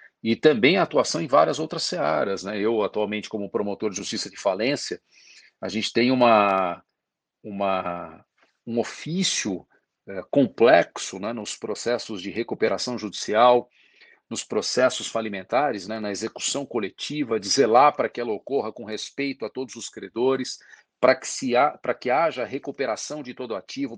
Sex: male